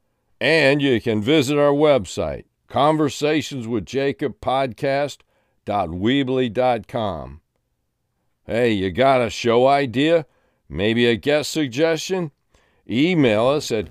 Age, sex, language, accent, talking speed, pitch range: 60-79, male, English, American, 90 wpm, 135-175 Hz